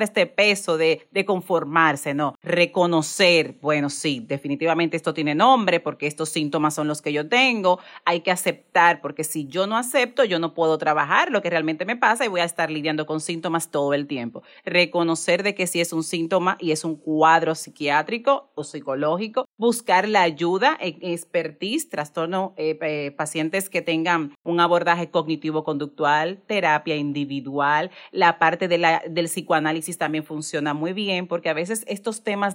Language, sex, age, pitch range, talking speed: Spanish, female, 40-59, 155-195 Hz, 170 wpm